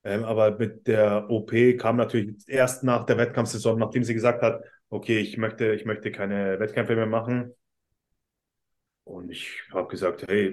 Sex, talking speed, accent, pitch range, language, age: male, 165 wpm, German, 115-135 Hz, German, 20-39